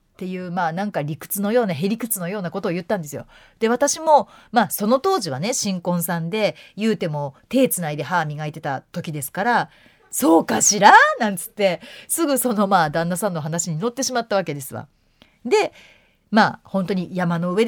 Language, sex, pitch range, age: Japanese, female, 170-245 Hz, 40-59